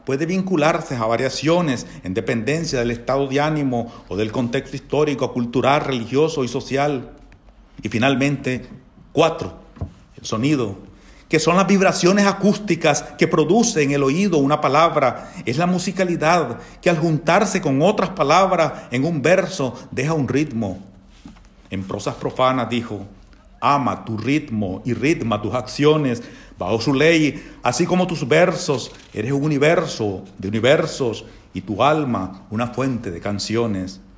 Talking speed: 140 wpm